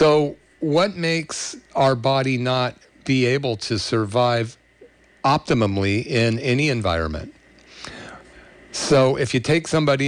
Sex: male